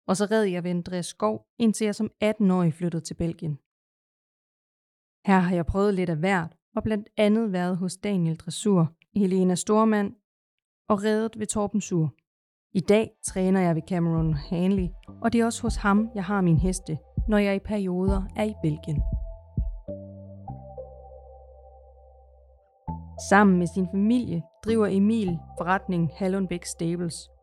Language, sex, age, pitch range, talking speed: Danish, female, 30-49, 165-210 Hz, 145 wpm